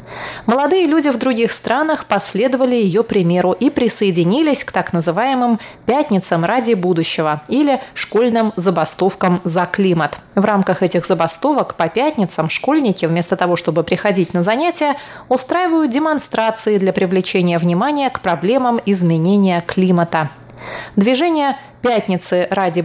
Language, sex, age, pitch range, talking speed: Russian, female, 30-49, 180-250 Hz, 120 wpm